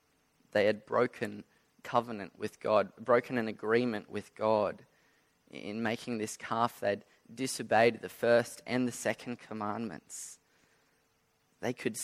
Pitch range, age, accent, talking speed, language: 115-160 Hz, 20-39, Australian, 125 wpm, English